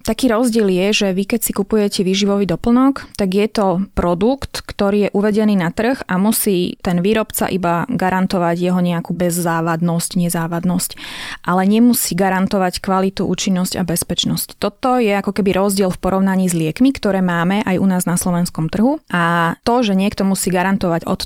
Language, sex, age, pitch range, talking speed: Slovak, female, 20-39, 180-210 Hz, 170 wpm